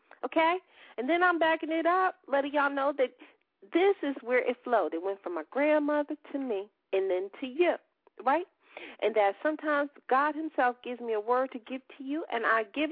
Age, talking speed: 40-59, 205 wpm